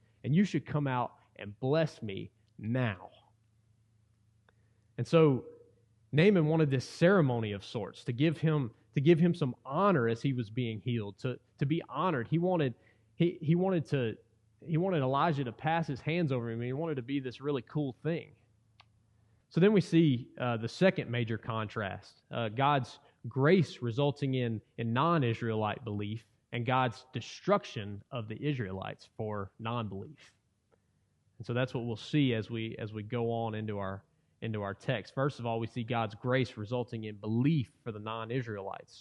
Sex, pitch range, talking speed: male, 115-155 Hz, 175 wpm